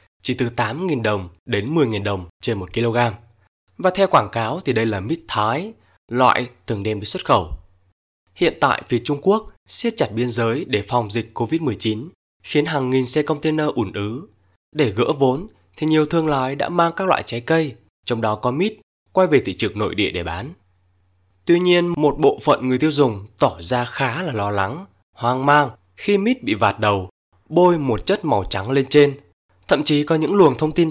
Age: 20-39